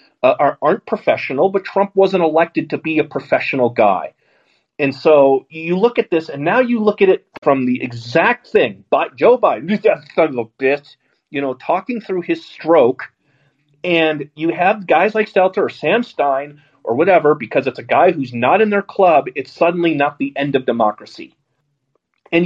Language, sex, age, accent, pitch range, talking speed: English, male, 30-49, American, 140-200 Hz, 185 wpm